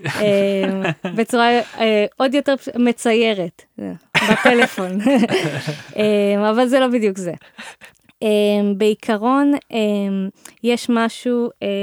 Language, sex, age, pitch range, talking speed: Hebrew, female, 20-39, 190-225 Hz, 65 wpm